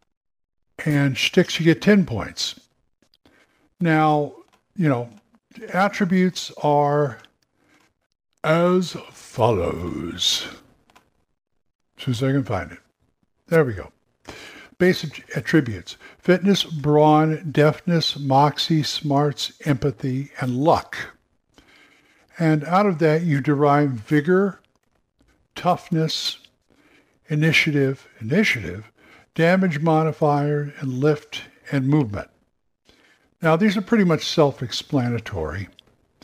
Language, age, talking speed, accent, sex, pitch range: English, 60-79, 90 wpm, American, male, 130-165 Hz